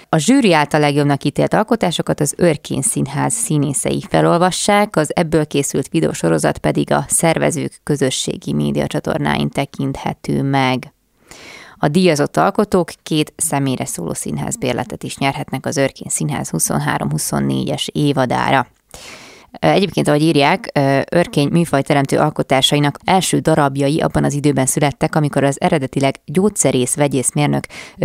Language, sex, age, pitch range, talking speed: Hungarian, female, 20-39, 130-160 Hz, 115 wpm